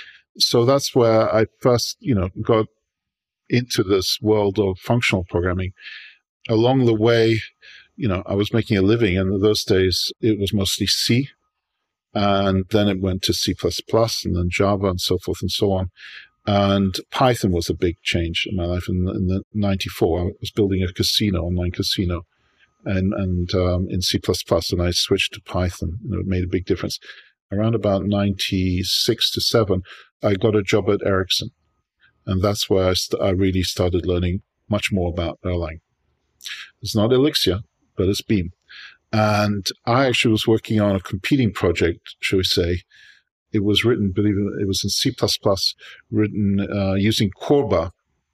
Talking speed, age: 175 wpm, 50-69